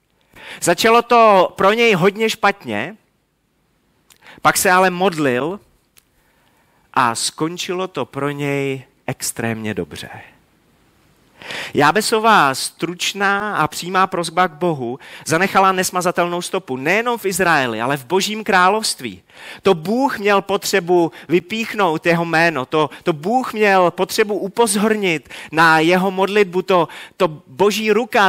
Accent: native